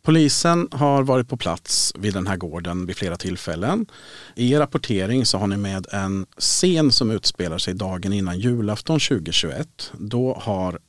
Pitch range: 95-120 Hz